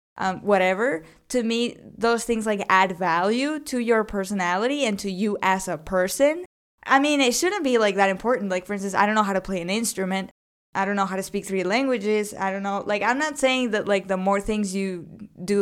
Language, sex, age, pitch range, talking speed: English, female, 10-29, 190-235 Hz, 225 wpm